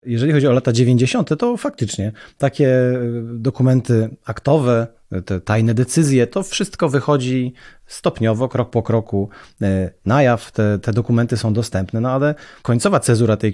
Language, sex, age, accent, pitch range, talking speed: Polish, male, 30-49, native, 110-145 Hz, 140 wpm